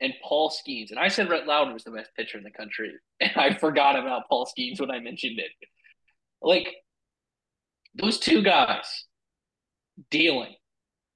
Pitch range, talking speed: 155-215 Hz, 160 wpm